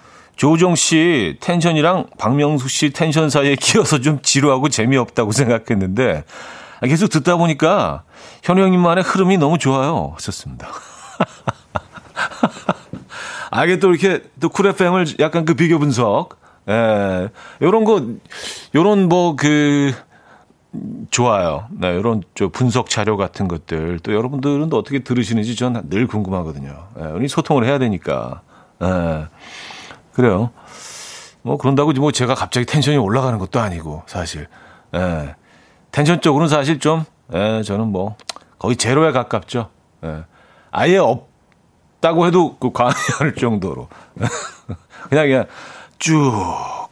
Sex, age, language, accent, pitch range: male, 40-59, Korean, native, 105-155 Hz